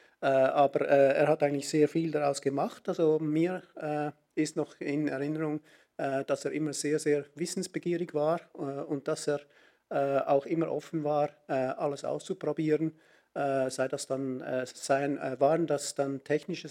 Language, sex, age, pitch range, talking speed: German, male, 50-69, 135-160 Hz, 170 wpm